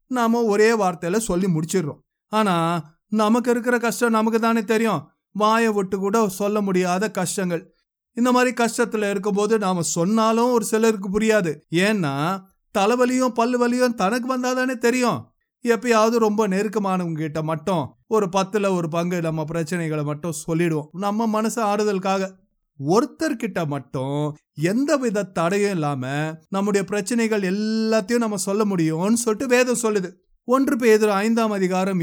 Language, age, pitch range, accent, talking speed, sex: Tamil, 30-49, 175-230 Hz, native, 125 wpm, male